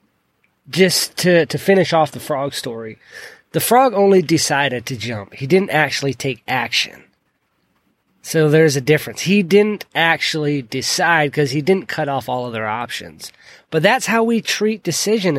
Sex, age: male, 20-39